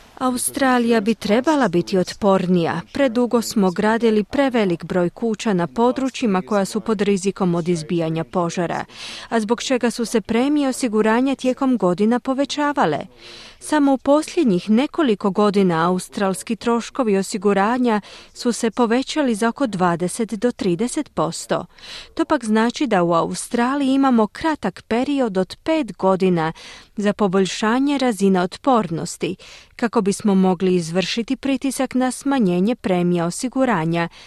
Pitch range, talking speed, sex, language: 190-260 Hz, 125 wpm, female, Croatian